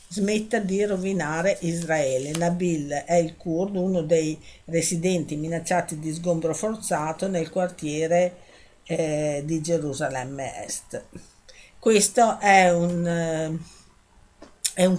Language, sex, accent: Italian, female, native